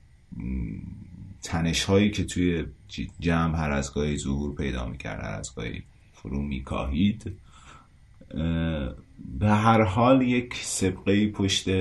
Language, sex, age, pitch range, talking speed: Persian, male, 30-49, 70-100 Hz, 110 wpm